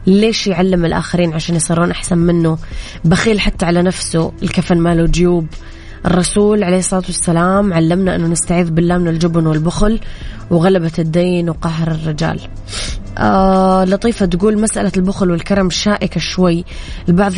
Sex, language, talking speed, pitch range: female, Arabic, 130 wpm, 170-190 Hz